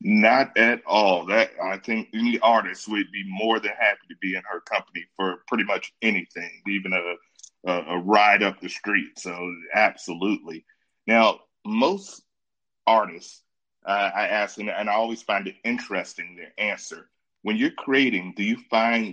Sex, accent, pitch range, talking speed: male, American, 95-115 Hz, 165 wpm